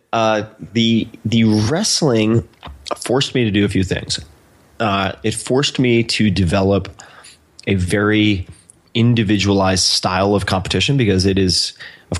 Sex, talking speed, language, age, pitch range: male, 135 wpm, English, 30-49, 95-105 Hz